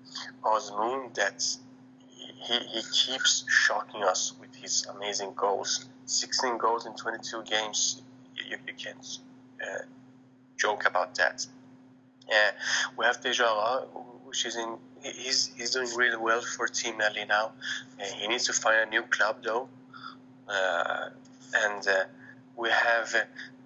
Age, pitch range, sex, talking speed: 20-39, 115-130 Hz, male, 135 wpm